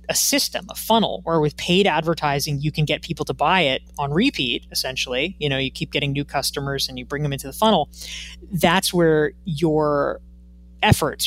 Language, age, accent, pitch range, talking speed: English, 20-39, American, 145-190 Hz, 190 wpm